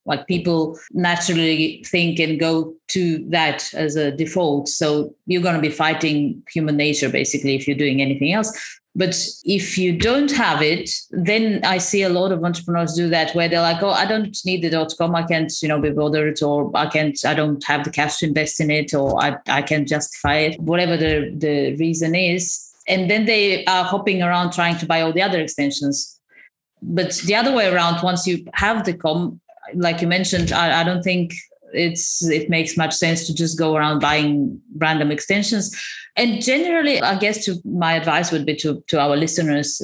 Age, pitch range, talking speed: 30-49, 150-180 Hz, 200 wpm